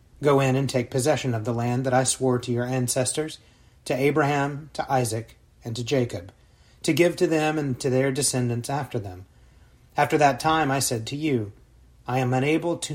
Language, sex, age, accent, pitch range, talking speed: English, male, 30-49, American, 120-145 Hz, 190 wpm